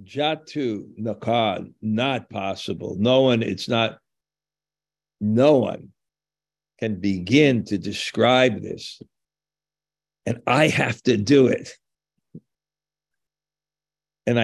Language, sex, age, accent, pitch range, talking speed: English, male, 60-79, American, 115-155 Hz, 90 wpm